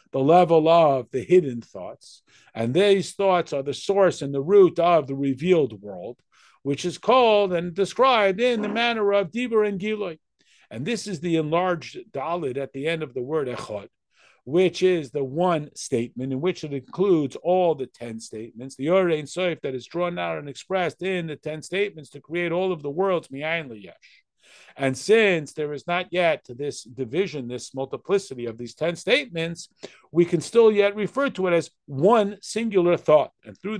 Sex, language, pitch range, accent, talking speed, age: male, English, 140-190 Hz, American, 190 wpm, 50-69